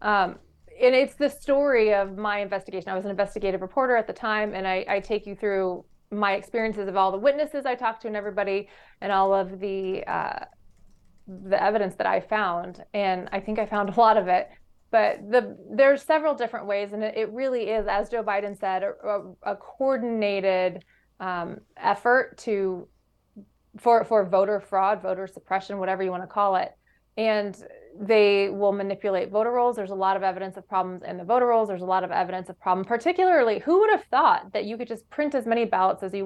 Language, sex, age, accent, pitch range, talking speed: English, female, 20-39, American, 195-230 Hz, 205 wpm